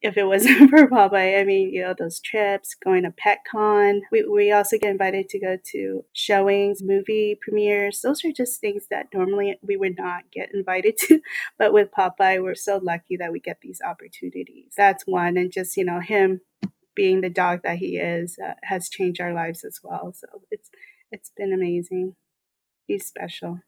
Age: 30-49